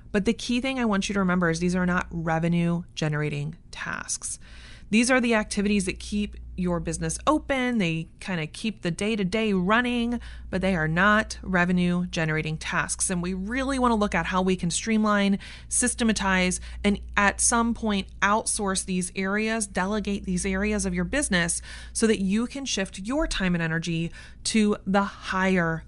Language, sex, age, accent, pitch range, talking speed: English, female, 30-49, American, 165-205 Hz, 175 wpm